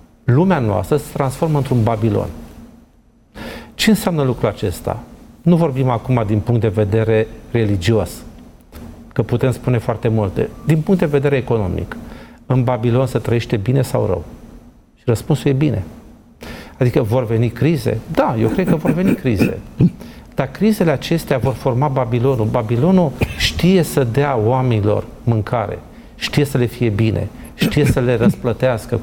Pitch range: 115-145 Hz